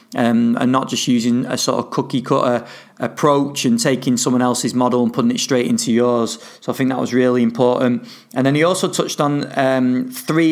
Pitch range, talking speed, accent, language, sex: 125-140 Hz, 210 wpm, British, English, male